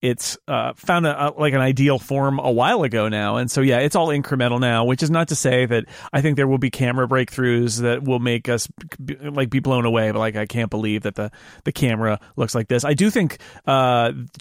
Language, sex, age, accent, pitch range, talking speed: English, male, 40-59, American, 120-155 Hz, 240 wpm